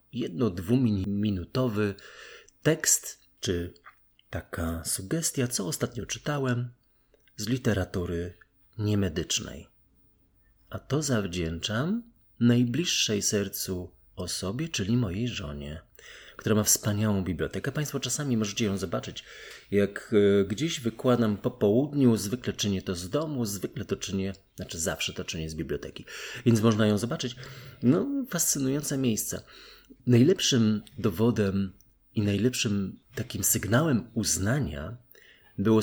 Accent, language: native, Polish